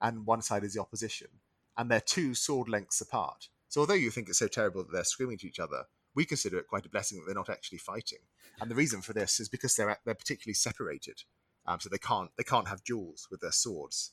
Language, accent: English, British